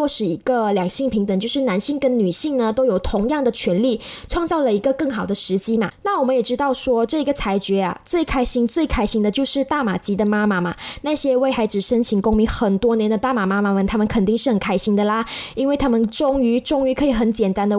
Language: Chinese